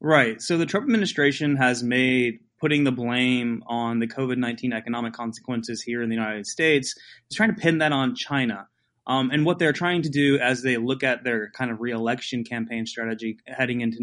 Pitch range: 120-140 Hz